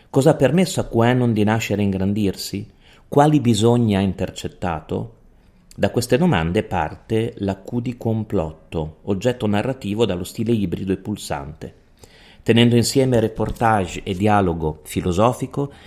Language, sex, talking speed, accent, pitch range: Italian, male, 130 wpm, native, 95-120 Hz